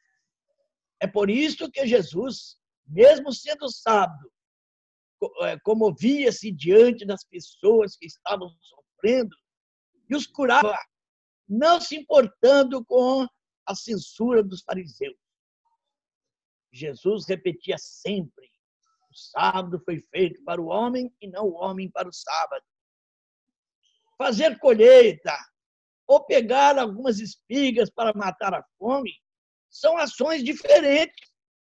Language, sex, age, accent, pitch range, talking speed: Portuguese, male, 60-79, Brazilian, 200-285 Hz, 105 wpm